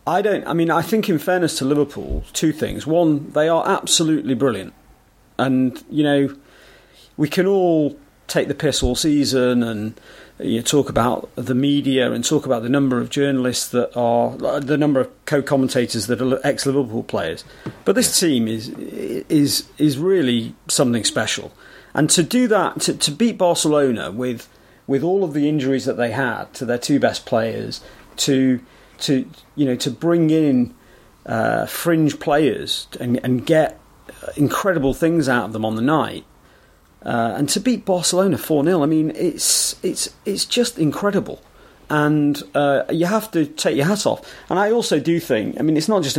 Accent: British